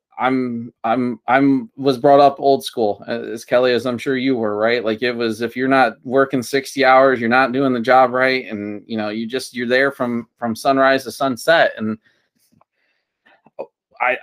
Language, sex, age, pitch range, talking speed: English, male, 20-39, 120-140 Hz, 190 wpm